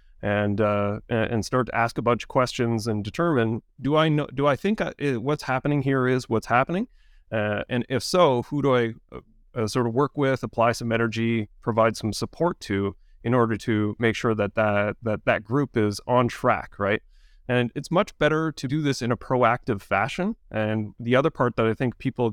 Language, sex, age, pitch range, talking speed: English, male, 30-49, 110-140 Hz, 205 wpm